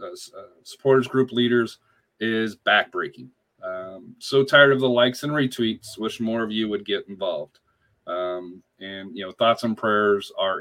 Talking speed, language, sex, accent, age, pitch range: 170 wpm, English, male, American, 30-49, 105-125 Hz